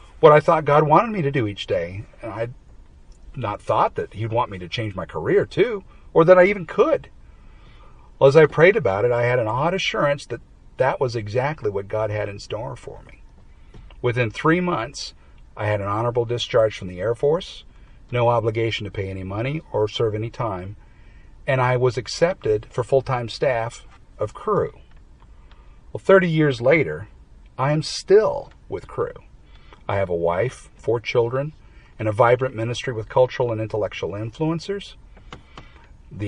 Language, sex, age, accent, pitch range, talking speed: English, male, 40-59, American, 100-135 Hz, 180 wpm